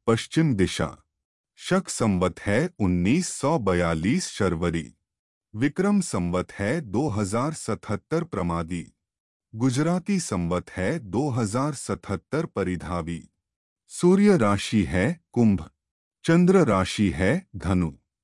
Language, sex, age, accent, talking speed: Hindi, male, 30-49, native, 80 wpm